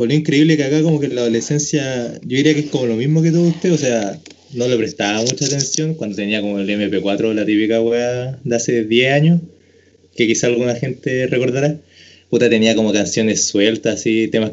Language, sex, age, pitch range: Spanish, male, 20-39, 105-145 Hz